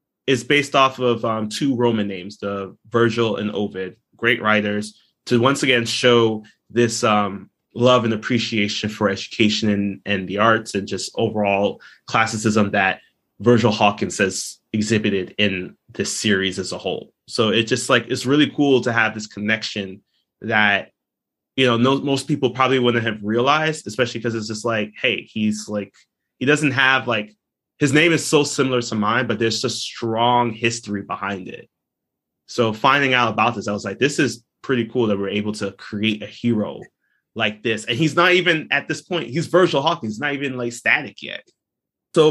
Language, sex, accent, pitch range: English, male, American, 105-130 Hz